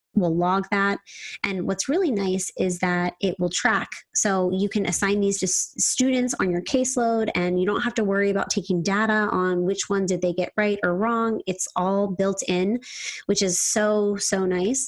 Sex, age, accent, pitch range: female, 20-39, American, 180-220 Hz